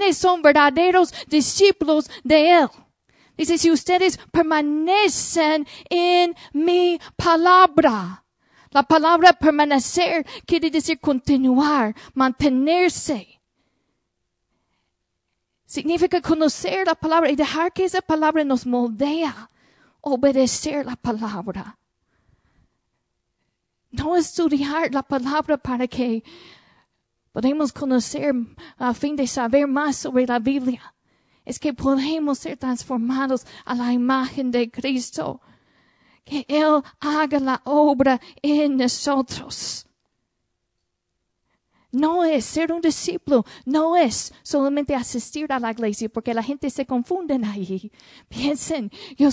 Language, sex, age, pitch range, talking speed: Spanish, female, 40-59, 255-320 Hz, 105 wpm